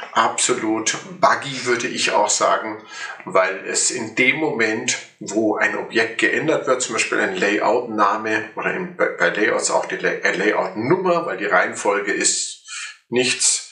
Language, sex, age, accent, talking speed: German, male, 50-69, German, 135 wpm